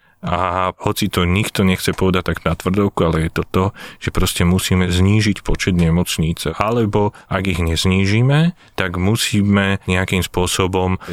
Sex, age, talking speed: male, 30-49, 145 wpm